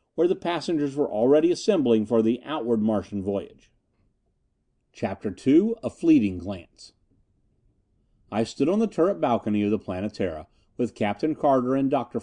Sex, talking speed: male, 145 wpm